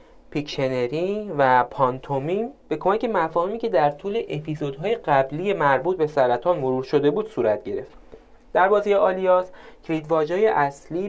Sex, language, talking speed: male, Persian, 130 wpm